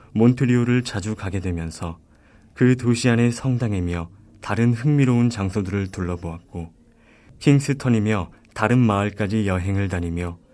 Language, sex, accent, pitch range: Korean, male, native, 90-115 Hz